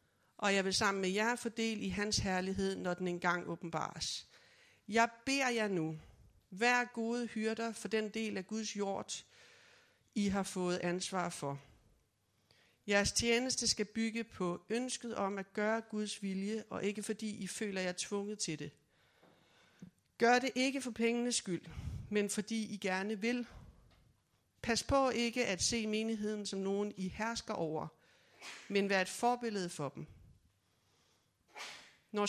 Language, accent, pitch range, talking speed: Danish, native, 175-220 Hz, 150 wpm